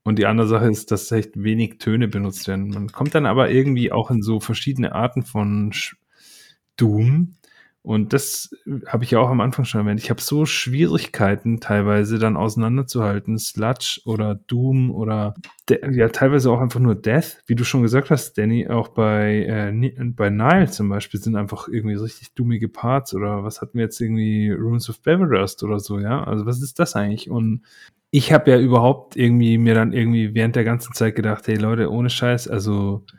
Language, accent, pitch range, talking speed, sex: German, German, 110-135 Hz, 195 wpm, male